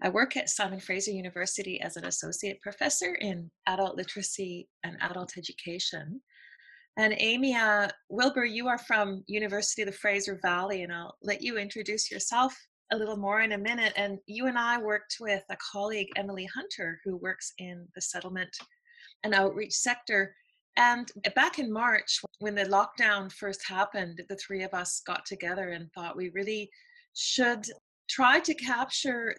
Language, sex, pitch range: English, female, 190-240 Hz